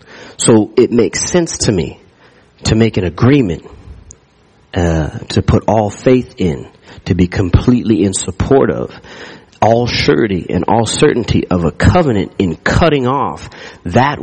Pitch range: 90-115 Hz